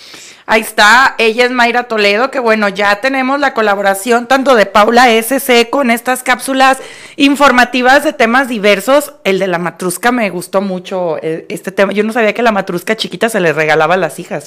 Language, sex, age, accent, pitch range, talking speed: Spanish, female, 30-49, Mexican, 200-260 Hz, 190 wpm